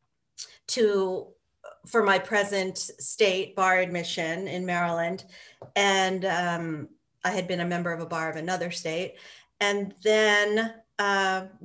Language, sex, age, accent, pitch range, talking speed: English, female, 40-59, American, 180-220 Hz, 130 wpm